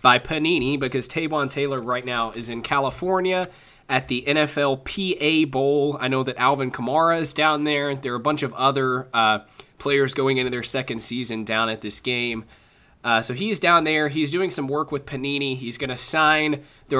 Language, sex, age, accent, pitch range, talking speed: English, male, 20-39, American, 125-150 Hz, 200 wpm